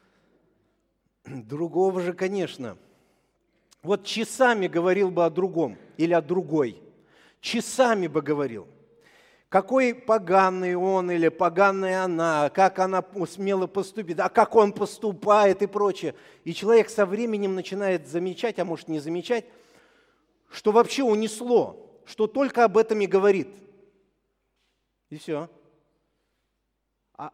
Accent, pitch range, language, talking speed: native, 185-235 Hz, Russian, 115 wpm